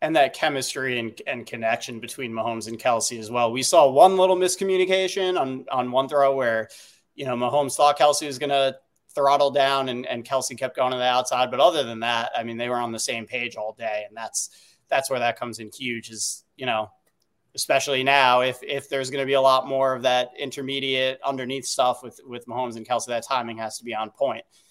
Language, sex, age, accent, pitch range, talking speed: English, male, 30-49, American, 120-160 Hz, 225 wpm